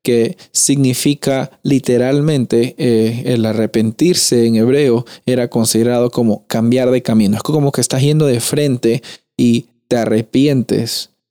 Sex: male